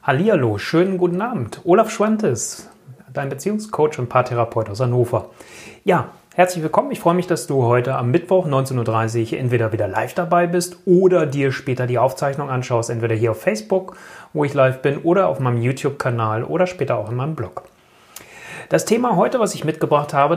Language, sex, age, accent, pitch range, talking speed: German, male, 30-49, German, 125-165 Hz, 180 wpm